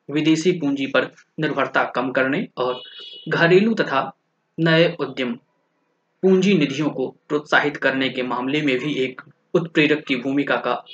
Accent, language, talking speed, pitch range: native, Hindi, 135 wpm, 140-175 Hz